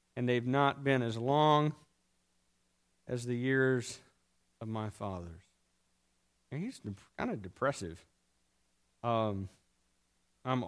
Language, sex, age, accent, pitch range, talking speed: English, male, 50-69, American, 105-145 Hz, 110 wpm